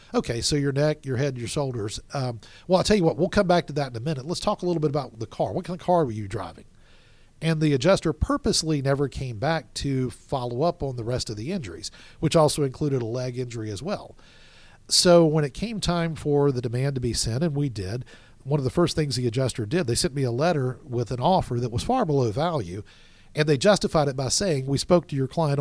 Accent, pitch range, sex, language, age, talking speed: American, 120-155 Hz, male, English, 50-69, 250 wpm